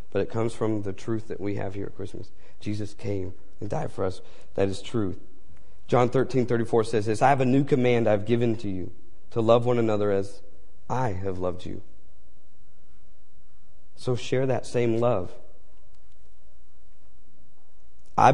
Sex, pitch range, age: male, 90-120 Hz, 40-59